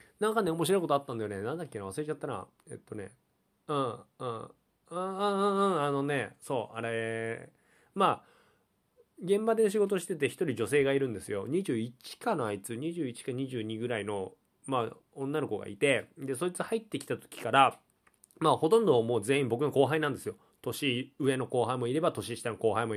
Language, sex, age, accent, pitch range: Japanese, male, 20-39, native, 120-185 Hz